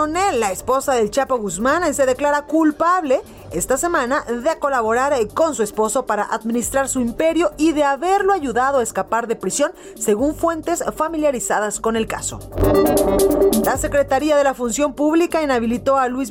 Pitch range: 230-310 Hz